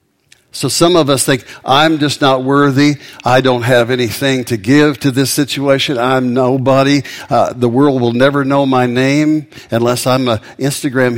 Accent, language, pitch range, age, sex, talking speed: American, English, 115-135 Hz, 60-79, male, 170 wpm